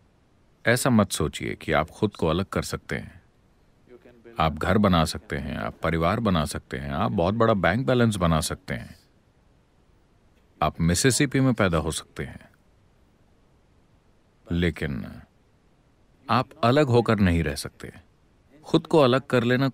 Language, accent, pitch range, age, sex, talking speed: English, Indian, 85-120 Hz, 40-59, male, 145 wpm